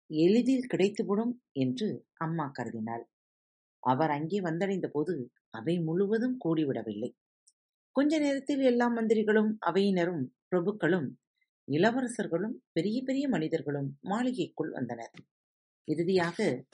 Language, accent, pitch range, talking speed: Tamil, native, 140-225 Hz, 90 wpm